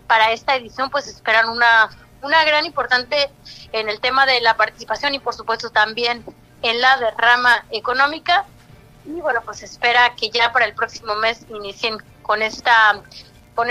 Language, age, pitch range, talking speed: Spanish, 30-49, 220-265 Hz, 160 wpm